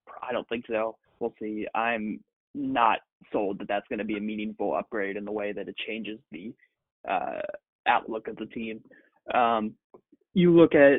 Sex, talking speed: male, 180 wpm